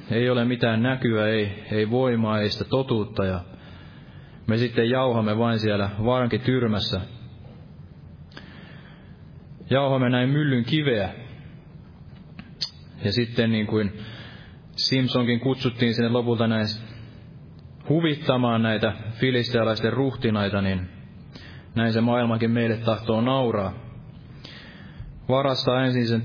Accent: native